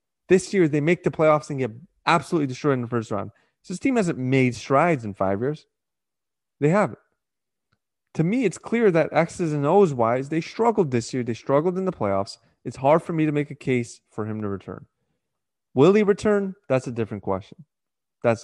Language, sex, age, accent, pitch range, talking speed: English, male, 20-39, American, 120-155 Hz, 200 wpm